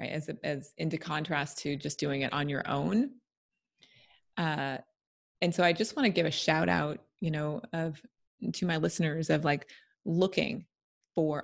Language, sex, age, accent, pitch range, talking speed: English, female, 30-49, American, 140-175 Hz, 175 wpm